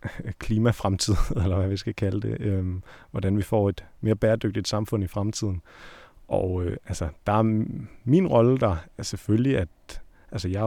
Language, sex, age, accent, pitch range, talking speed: Danish, male, 30-49, native, 90-110 Hz, 170 wpm